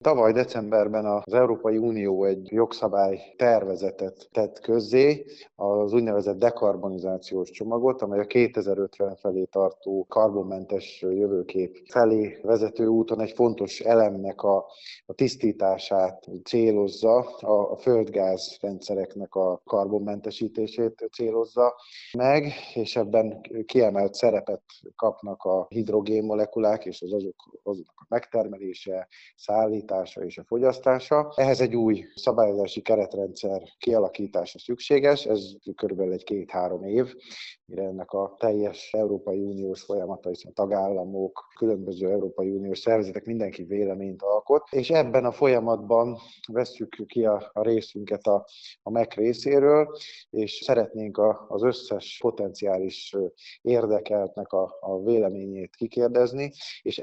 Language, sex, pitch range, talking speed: Hungarian, male, 95-115 Hz, 115 wpm